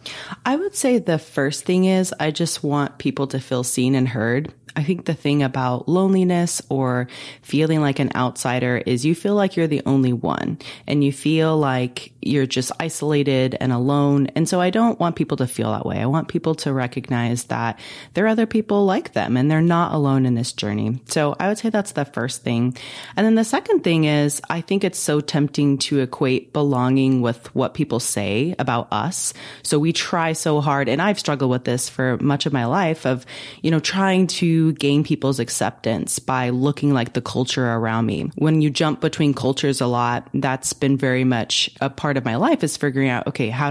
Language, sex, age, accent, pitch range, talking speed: English, female, 30-49, American, 125-160 Hz, 210 wpm